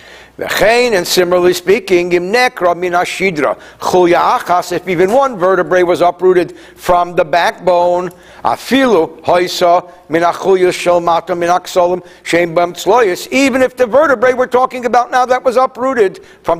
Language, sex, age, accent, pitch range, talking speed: English, male, 60-79, American, 180-245 Hz, 95 wpm